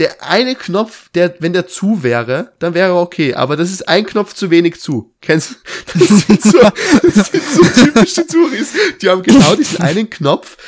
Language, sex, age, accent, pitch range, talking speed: German, male, 20-39, German, 125-175 Hz, 195 wpm